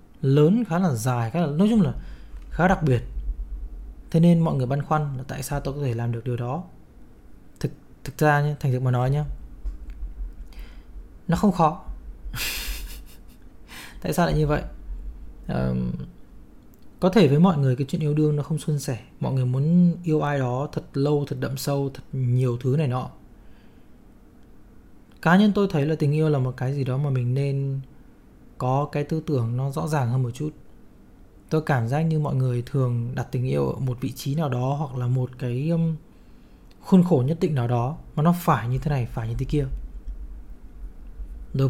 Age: 20-39